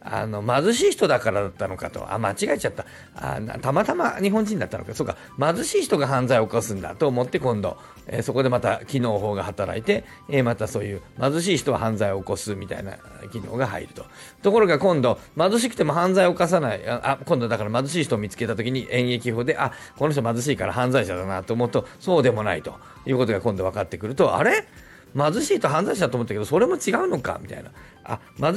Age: 40-59